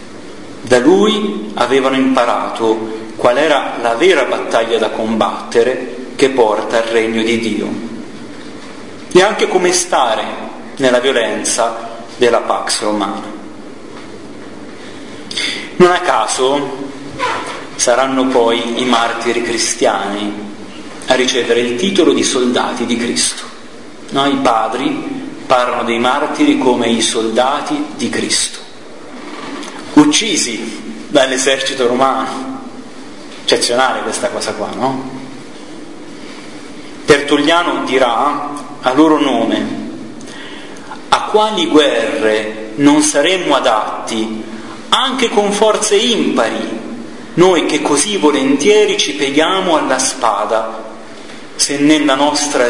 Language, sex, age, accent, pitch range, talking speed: Italian, male, 40-59, native, 120-185 Hz, 100 wpm